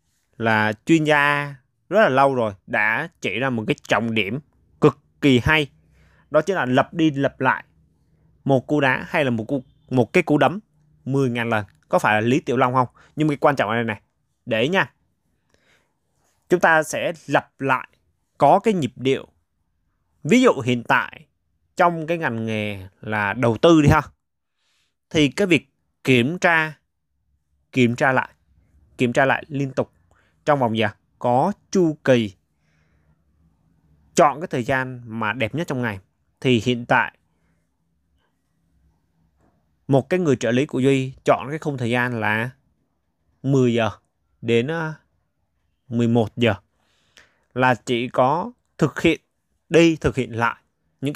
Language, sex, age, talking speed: Vietnamese, male, 20-39, 160 wpm